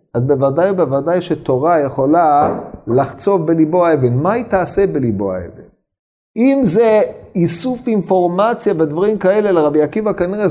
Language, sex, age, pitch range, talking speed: Hebrew, male, 50-69, 115-180 Hz, 125 wpm